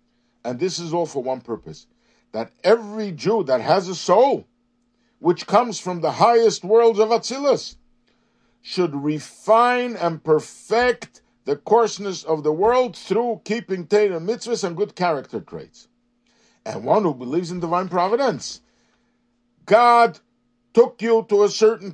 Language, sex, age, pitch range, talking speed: English, male, 60-79, 160-230 Hz, 140 wpm